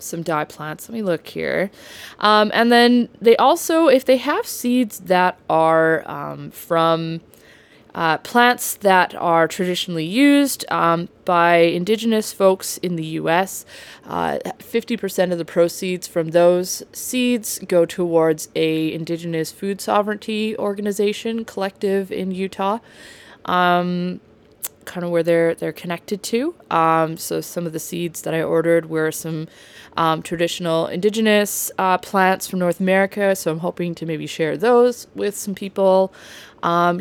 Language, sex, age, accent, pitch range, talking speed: English, female, 20-39, American, 165-210 Hz, 145 wpm